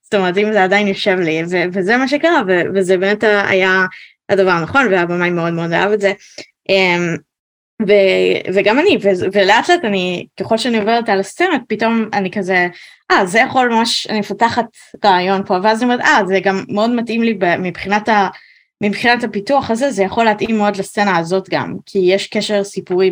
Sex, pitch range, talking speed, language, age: female, 175-215 Hz, 195 wpm, Hebrew, 20-39